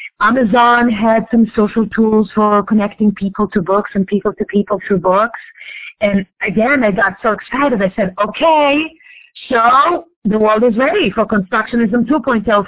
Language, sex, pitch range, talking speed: English, female, 205-250 Hz, 155 wpm